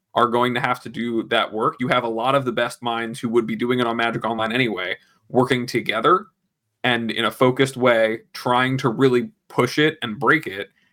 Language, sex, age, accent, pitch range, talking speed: English, male, 20-39, American, 110-135 Hz, 220 wpm